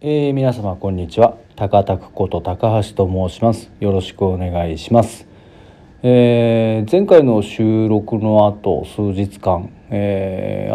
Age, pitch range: 40-59, 95-115 Hz